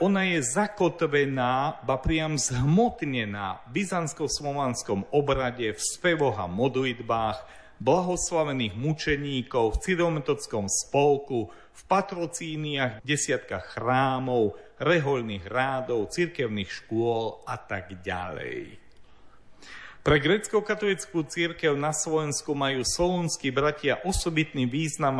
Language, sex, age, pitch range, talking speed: Slovak, male, 40-59, 120-160 Hz, 95 wpm